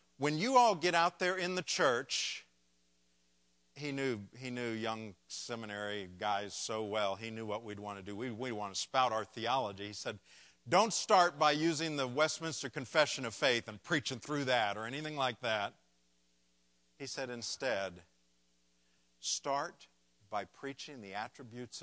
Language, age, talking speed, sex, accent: English, 50-69, 155 wpm, male, American